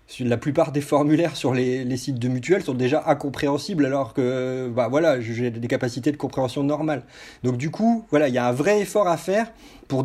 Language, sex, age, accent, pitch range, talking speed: French, male, 30-49, French, 135-170 Hz, 215 wpm